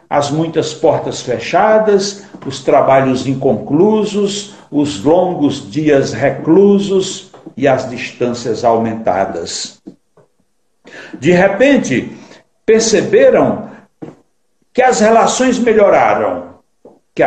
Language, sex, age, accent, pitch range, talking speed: Portuguese, male, 60-79, Brazilian, 130-195 Hz, 80 wpm